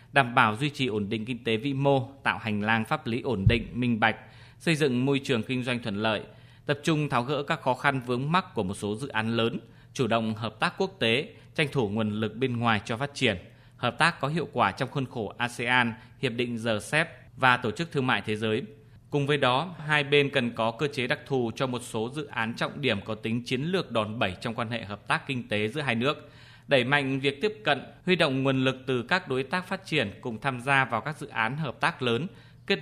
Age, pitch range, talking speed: 20-39, 115-140 Hz, 250 wpm